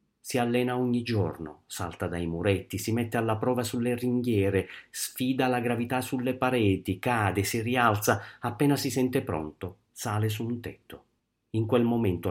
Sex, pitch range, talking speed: male, 100-120 Hz, 155 wpm